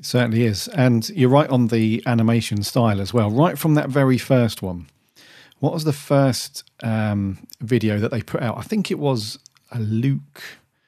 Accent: British